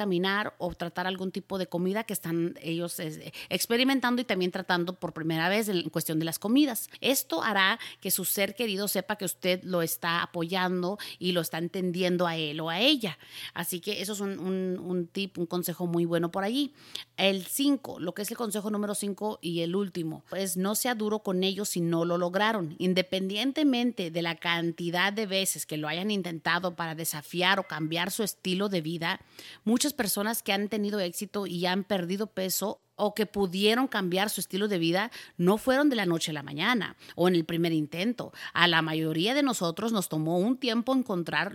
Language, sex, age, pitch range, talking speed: English, female, 30-49, 170-210 Hz, 200 wpm